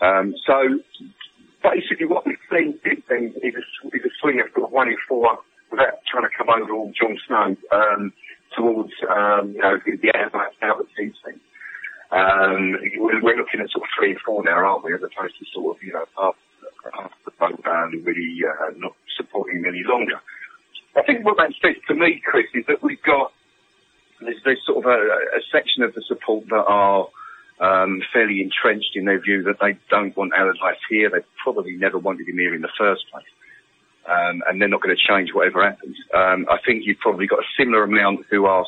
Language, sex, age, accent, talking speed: English, male, 40-59, British, 210 wpm